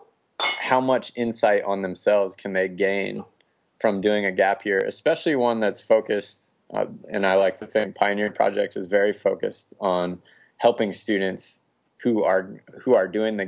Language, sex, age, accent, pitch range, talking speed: English, male, 20-39, American, 95-115 Hz, 165 wpm